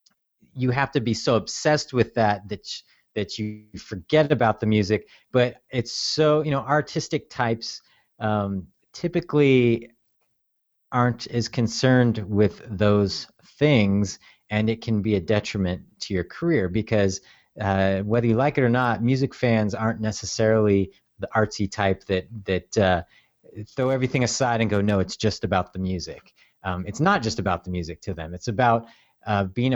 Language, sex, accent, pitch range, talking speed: English, male, American, 105-125 Hz, 165 wpm